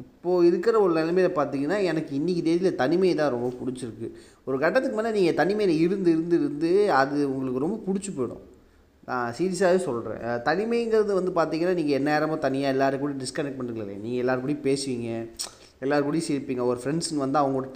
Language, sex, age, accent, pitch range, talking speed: Tamil, male, 20-39, native, 115-165 Hz, 165 wpm